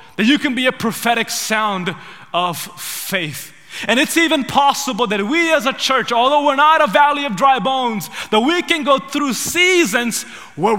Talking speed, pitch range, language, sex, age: 185 wpm, 225-285 Hz, English, male, 20-39